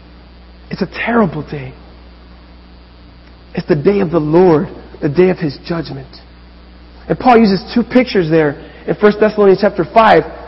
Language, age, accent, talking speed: English, 30-49, American, 150 wpm